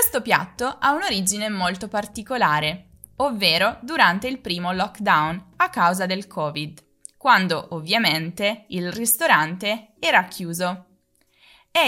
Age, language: 20-39, Italian